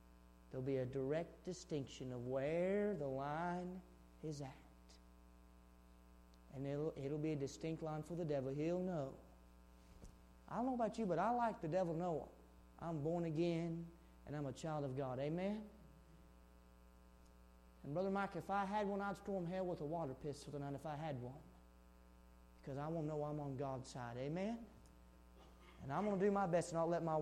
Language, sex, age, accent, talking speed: English, male, 30-49, American, 185 wpm